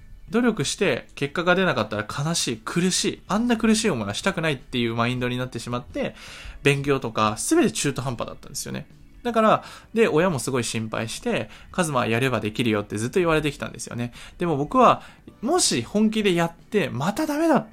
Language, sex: Japanese, male